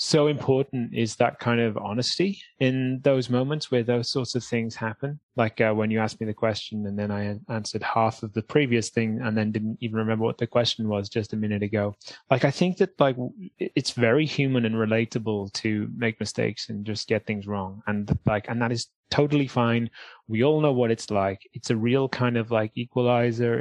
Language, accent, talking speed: English, British, 215 wpm